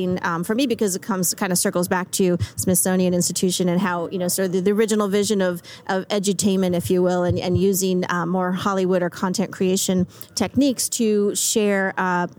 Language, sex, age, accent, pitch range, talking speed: English, female, 30-49, American, 180-210 Hz, 205 wpm